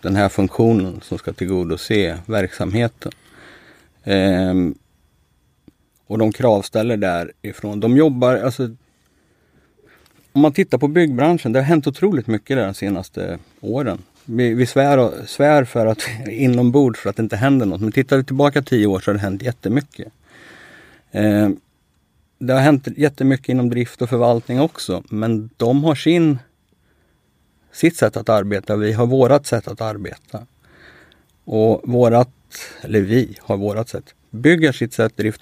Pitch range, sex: 100-125 Hz, male